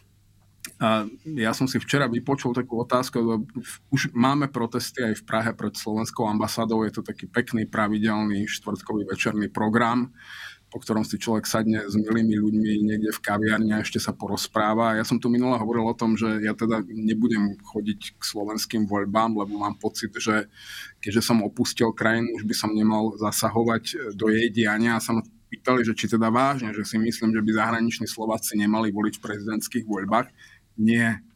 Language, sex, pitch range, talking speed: Slovak, male, 105-115 Hz, 175 wpm